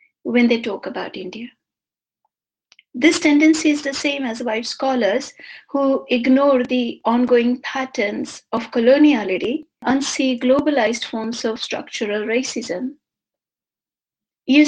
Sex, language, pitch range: female, English, 235-290 Hz